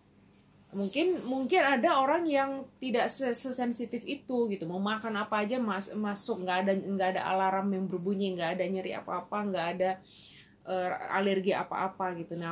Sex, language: female, Indonesian